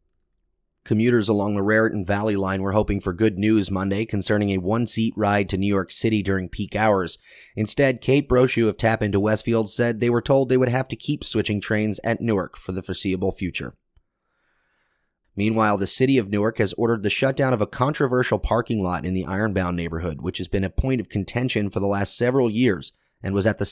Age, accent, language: 30-49, American, English